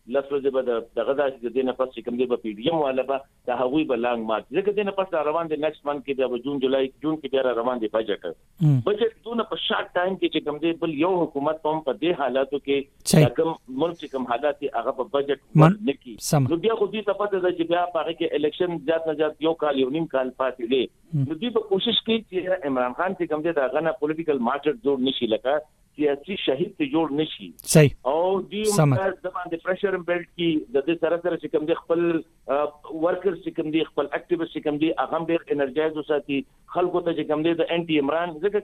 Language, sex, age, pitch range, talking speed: Urdu, male, 60-79, 140-180 Hz, 55 wpm